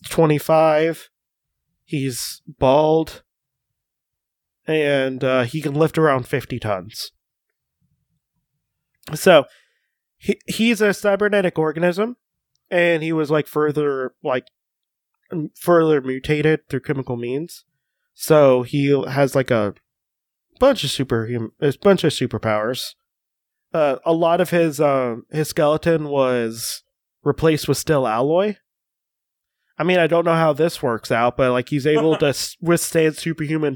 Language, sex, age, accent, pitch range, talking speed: English, male, 20-39, American, 130-165 Hz, 130 wpm